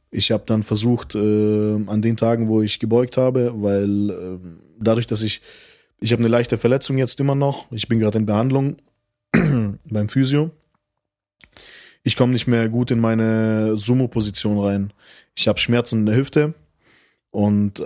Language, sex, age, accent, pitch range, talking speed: German, male, 20-39, German, 105-125 Hz, 160 wpm